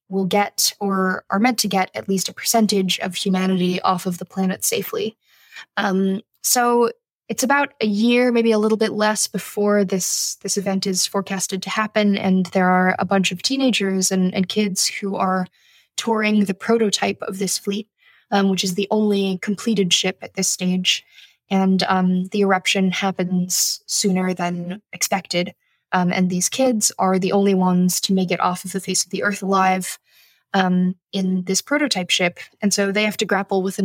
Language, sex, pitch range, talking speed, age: English, female, 185-205 Hz, 185 wpm, 10-29